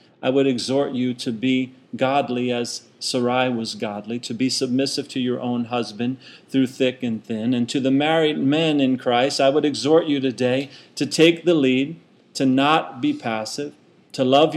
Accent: American